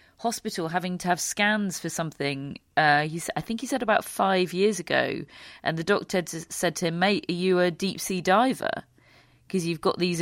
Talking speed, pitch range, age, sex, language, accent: 205 wpm, 150-185 Hz, 40-59, female, English, British